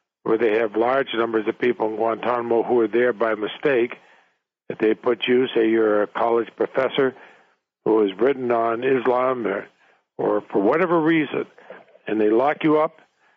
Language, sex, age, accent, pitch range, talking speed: English, male, 60-79, American, 115-145 Hz, 170 wpm